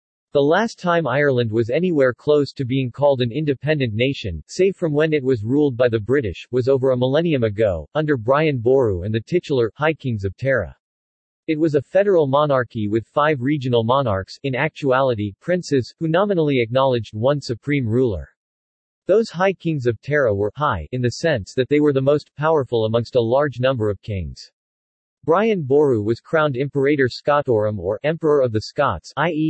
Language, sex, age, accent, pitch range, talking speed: English, male, 40-59, American, 115-150 Hz, 180 wpm